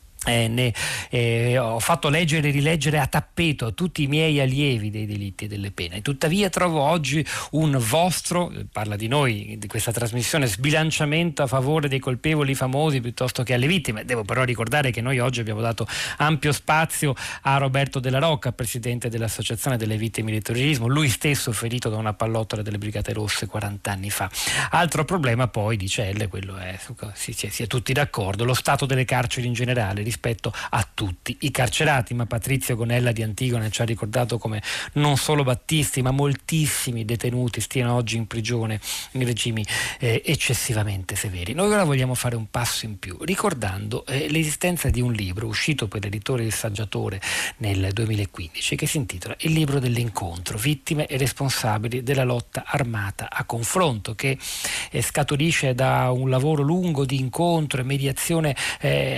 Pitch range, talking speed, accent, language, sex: 110-145 Hz, 170 wpm, native, Italian, male